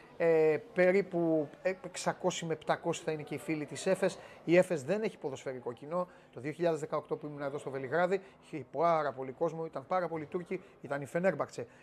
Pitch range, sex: 140-180 Hz, male